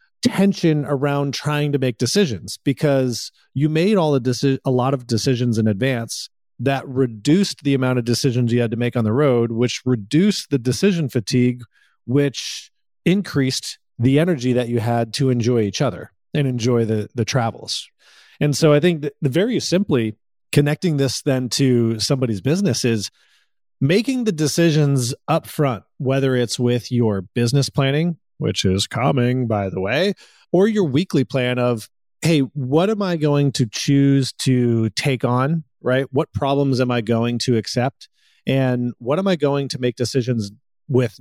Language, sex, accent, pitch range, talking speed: English, male, American, 120-145 Hz, 165 wpm